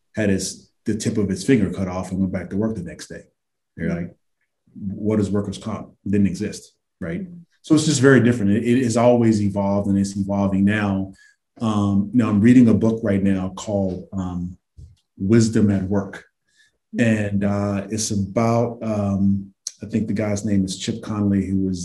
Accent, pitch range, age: American, 95-110 Hz, 30-49